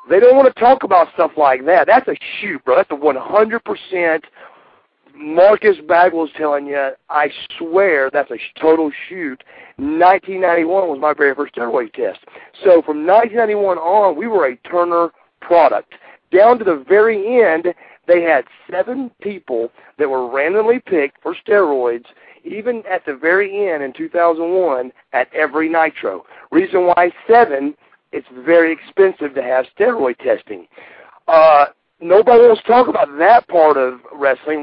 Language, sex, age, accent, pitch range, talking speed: English, male, 50-69, American, 150-215 Hz, 150 wpm